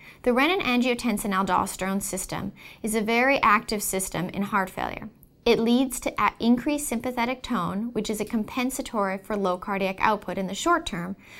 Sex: female